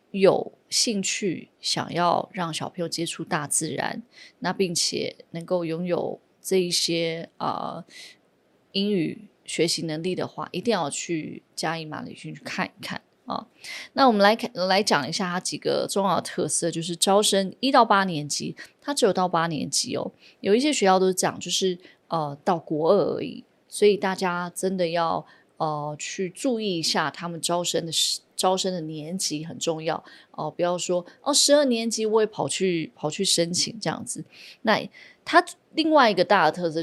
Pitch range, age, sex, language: 165-215 Hz, 20-39, female, Chinese